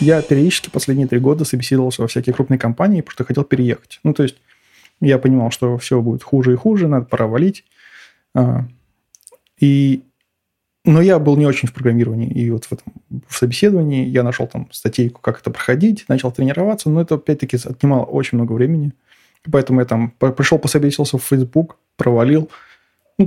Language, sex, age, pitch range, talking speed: Russian, male, 20-39, 125-155 Hz, 175 wpm